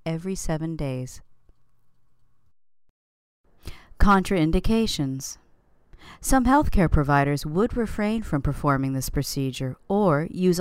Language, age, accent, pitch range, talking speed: English, 40-59, American, 130-200 Hz, 90 wpm